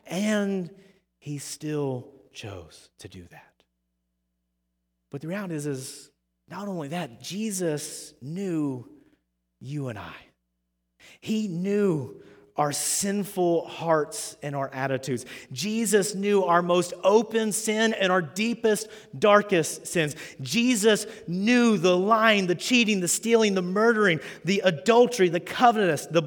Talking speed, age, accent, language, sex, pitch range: 125 wpm, 30-49, American, English, male, 145-215 Hz